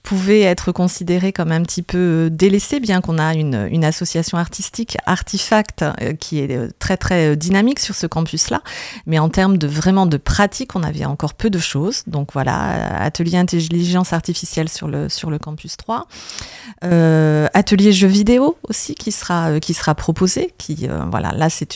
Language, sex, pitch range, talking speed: French, female, 160-200 Hz, 175 wpm